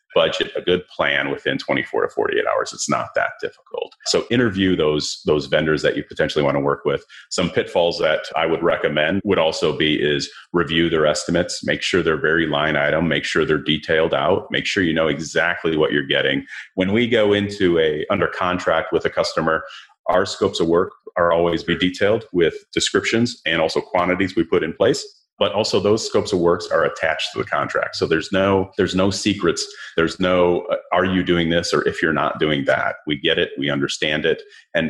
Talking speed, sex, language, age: 210 wpm, male, English, 30-49